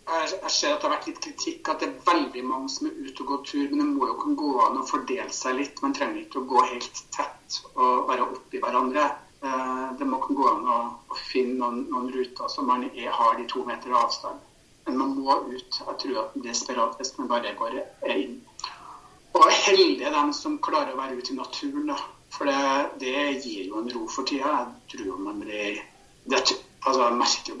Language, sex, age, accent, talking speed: English, male, 60-79, Norwegian, 225 wpm